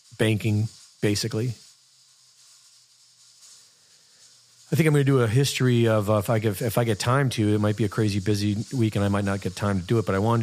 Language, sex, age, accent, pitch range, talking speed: English, male, 40-59, American, 100-115 Hz, 215 wpm